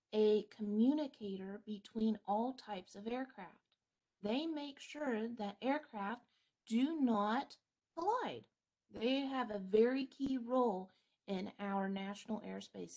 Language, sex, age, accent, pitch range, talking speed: English, female, 30-49, American, 215-280 Hz, 115 wpm